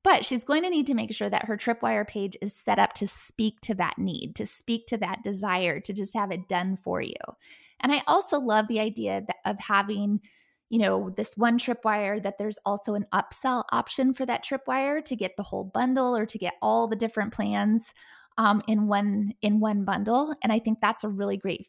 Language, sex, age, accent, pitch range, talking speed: English, female, 20-39, American, 210-260 Hz, 215 wpm